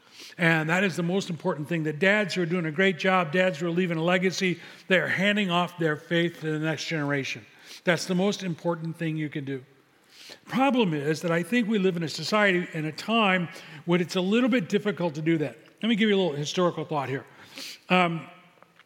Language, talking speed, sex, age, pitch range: English, 225 wpm, male, 40-59, 165-195 Hz